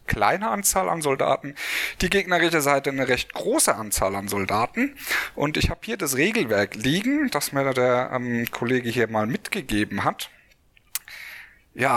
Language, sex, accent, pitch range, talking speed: German, male, German, 115-160 Hz, 150 wpm